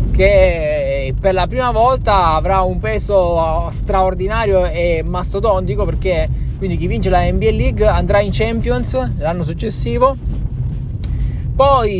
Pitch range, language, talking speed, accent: 145-195 Hz, Italian, 120 wpm, native